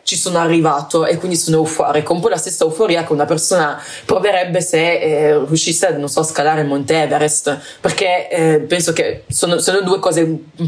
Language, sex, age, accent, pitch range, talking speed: Italian, female, 20-39, native, 155-180 Hz, 195 wpm